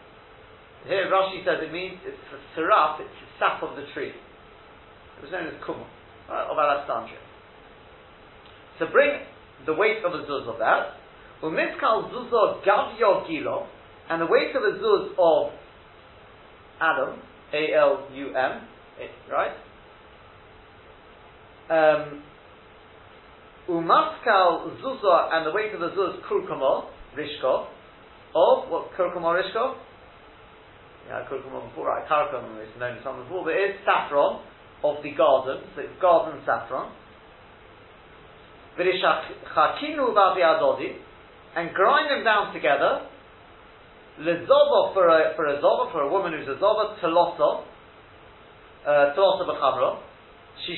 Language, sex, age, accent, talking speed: English, male, 50-69, British, 125 wpm